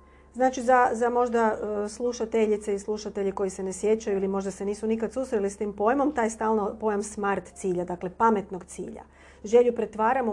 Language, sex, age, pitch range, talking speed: Croatian, female, 40-59, 195-235 Hz, 175 wpm